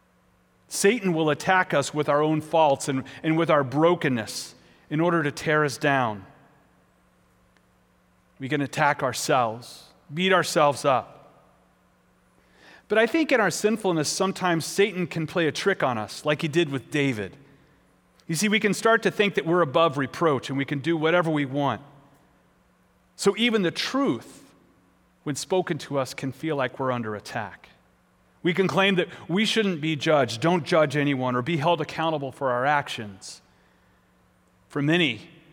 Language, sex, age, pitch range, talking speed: English, male, 40-59, 130-170 Hz, 165 wpm